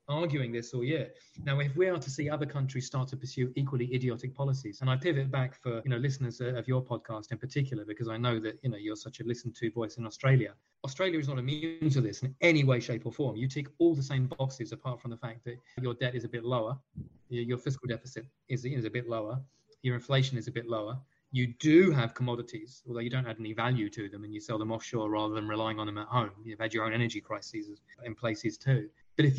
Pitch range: 115-145 Hz